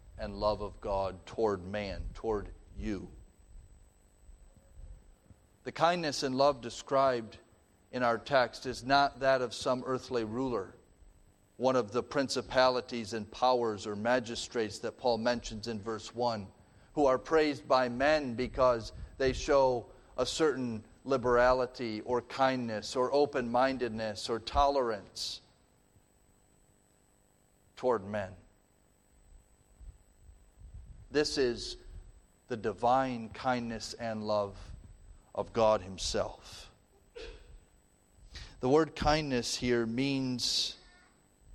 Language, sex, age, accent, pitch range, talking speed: English, male, 40-59, American, 105-140 Hz, 105 wpm